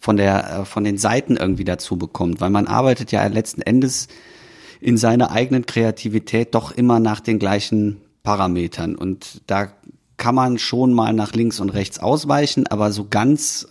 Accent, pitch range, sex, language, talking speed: German, 105-125 Hz, male, German, 165 wpm